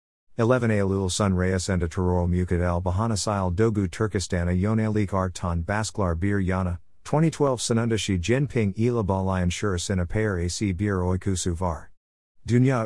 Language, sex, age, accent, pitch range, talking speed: Turkish, male, 50-69, American, 90-115 Hz, 145 wpm